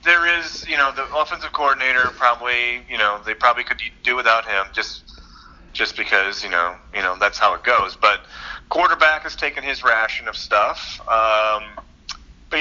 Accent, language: American, English